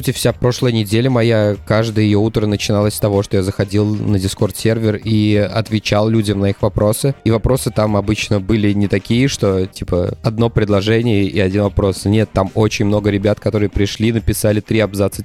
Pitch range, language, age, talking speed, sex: 100-115 Hz, Russian, 20-39, 180 wpm, male